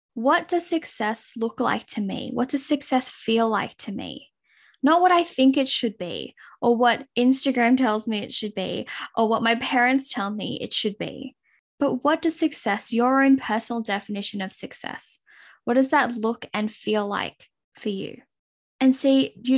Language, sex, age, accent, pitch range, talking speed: English, female, 10-29, Australian, 210-255 Hz, 185 wpm